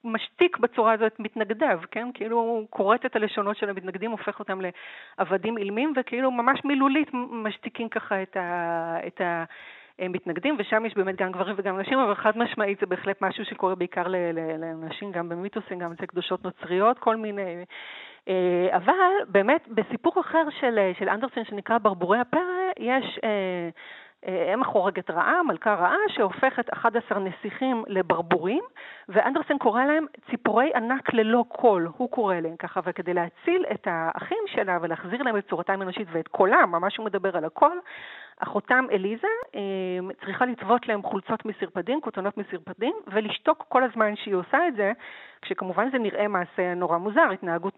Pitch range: 185-240 Hz